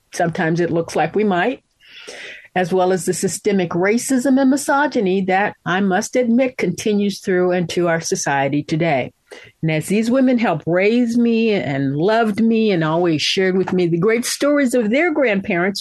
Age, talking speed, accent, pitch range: 50-69, 170 wpm, American, 160-215 Hz